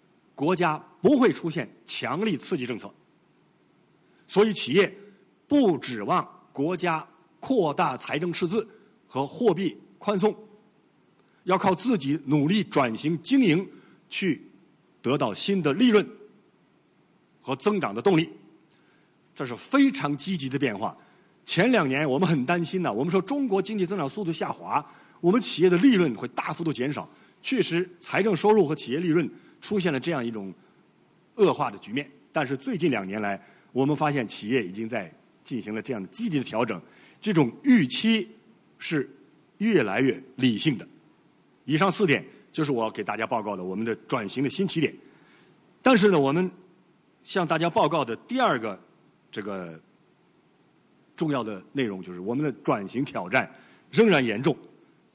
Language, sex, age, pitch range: Chinese, male, 50-69, 140-210 Hz